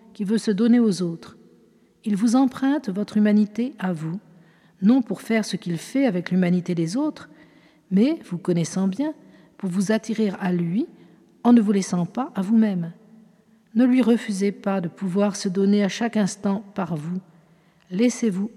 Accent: French